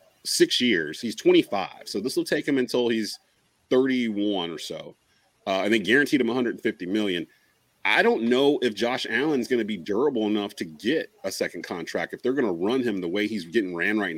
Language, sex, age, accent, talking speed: English, male, 30-49, American, 205 wpm